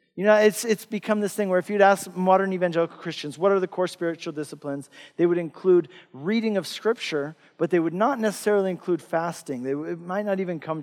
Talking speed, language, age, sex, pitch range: 215 wpm, English, 40-59, male, 165-205 Hz